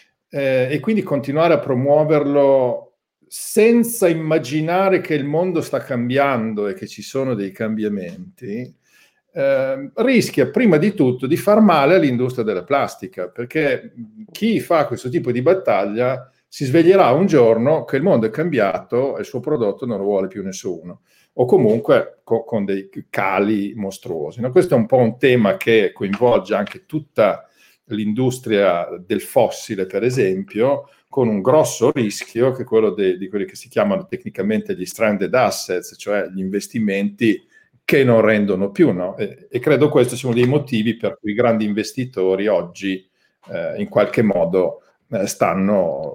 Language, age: Italian, 50-69